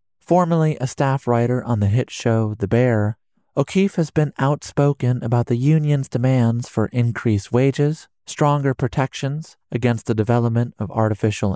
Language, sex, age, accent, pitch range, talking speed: English, male, 30-49, American, 110-140 Hz, 145 wpm